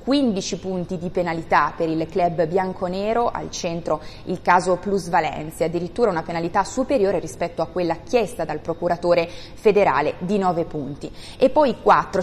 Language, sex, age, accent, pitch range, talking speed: Italian, female, 20-39, native, 170-215 Hz, 150 wpm